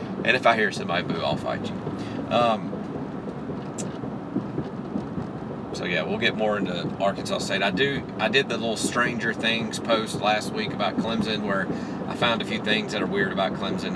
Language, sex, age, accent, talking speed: English, male, 40-59, American, 175 wpm